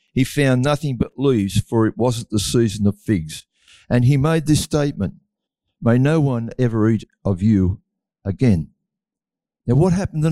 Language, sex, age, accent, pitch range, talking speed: English, male, 60-79, Australian, 120-165 Hz, 170 wpm